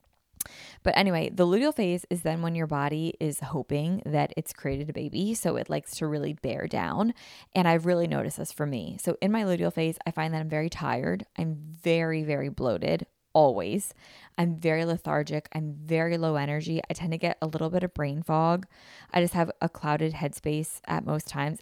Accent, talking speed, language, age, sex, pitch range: American, 205 wpm, English, 20-39, female, 150-180 Hz